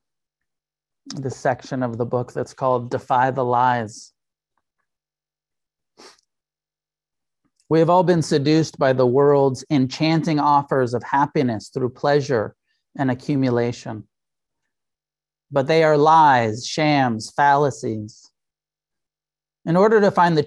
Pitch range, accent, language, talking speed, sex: 130-160 Hz, American, English, 110 wpm, male